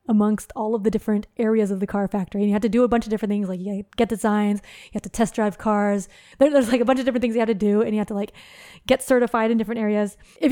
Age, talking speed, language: 20-39, 300 wpm, English